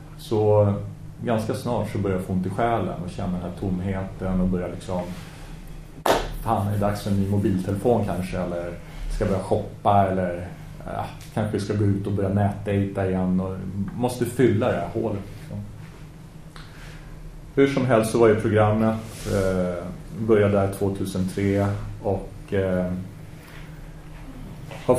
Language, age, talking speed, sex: Swedish, 30-49, 140 wpm, male